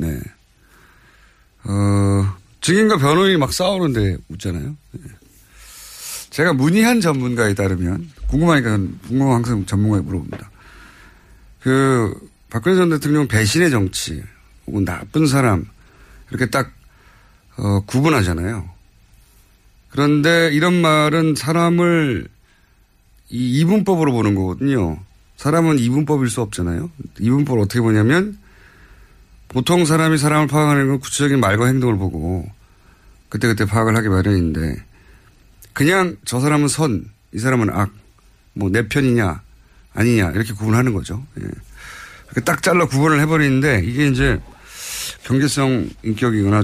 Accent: native